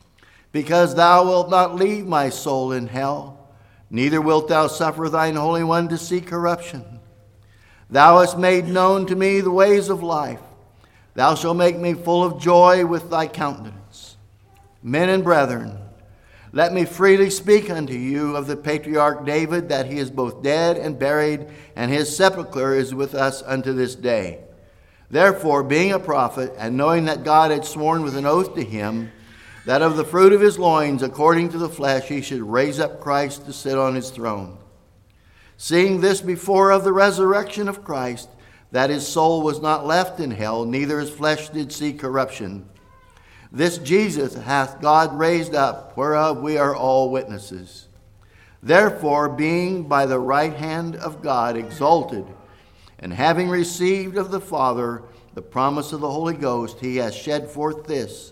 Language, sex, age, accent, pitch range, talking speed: English, male, 50-69, American, 125-170 Hz, 170 wpm